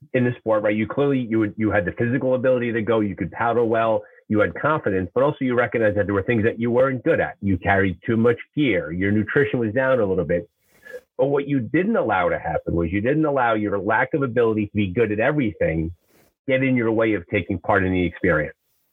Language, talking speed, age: English, 240 wpm, 30-49